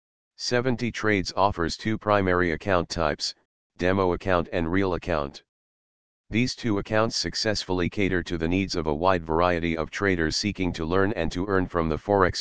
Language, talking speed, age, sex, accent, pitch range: English, 165 wpm, 40-59, male, American, 80-100 Hz